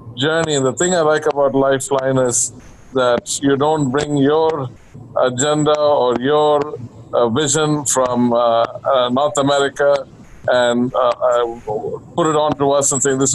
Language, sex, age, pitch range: English, male, 50-69, 120-140 Hz